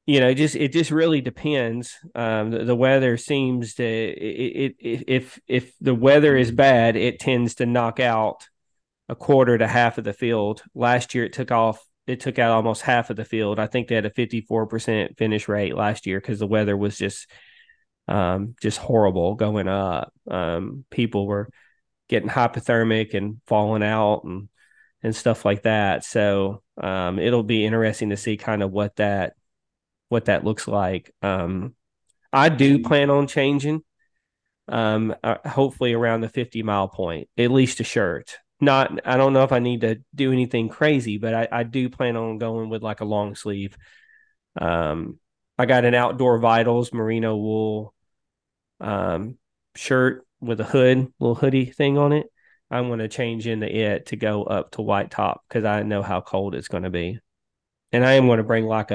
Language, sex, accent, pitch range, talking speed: English, male, American, 105-125 Hz, 185 wpm